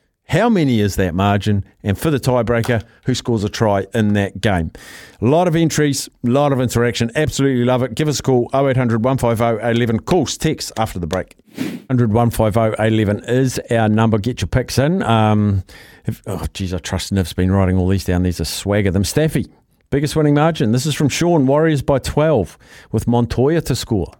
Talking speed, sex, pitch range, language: 200 wpm, male, 105-155 Hz, English